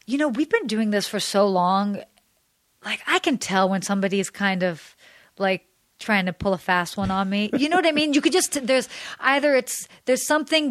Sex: female